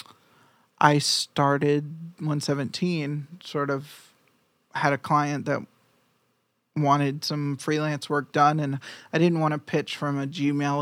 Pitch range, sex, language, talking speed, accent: 140-160 Hz, male, English, 130 wpm, American